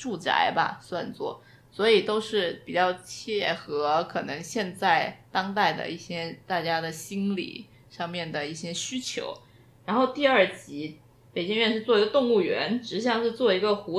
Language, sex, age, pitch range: Chinese, female, 20-39, 180-270 Hz